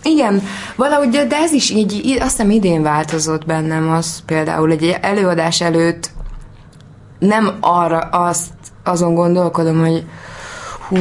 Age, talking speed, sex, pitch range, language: 20-39, 130 wpm, female, 155-205 Hz, Hungarian